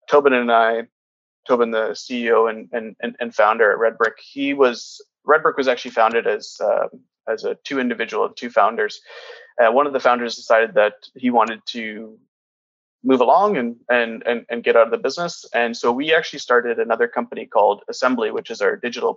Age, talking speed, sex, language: 20-39, 190 wpm, male, English